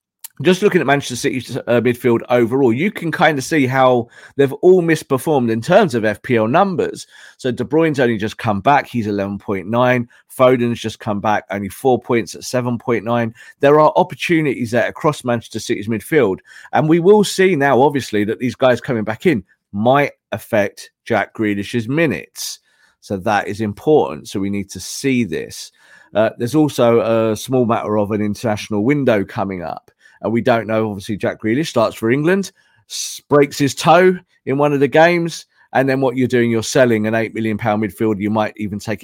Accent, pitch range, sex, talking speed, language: British, 110-150 Hz, male, 185 wpm, English